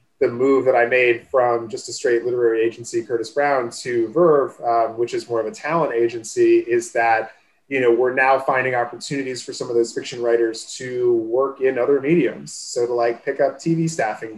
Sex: male